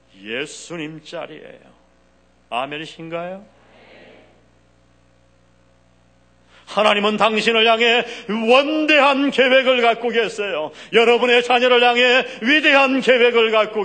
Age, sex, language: 40-59, male, Korean